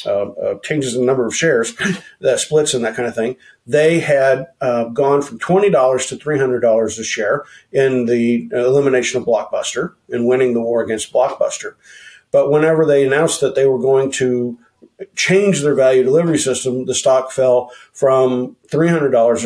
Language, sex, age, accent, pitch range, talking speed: English, male, 50-69, American, 125-155 Hz, 170 wpm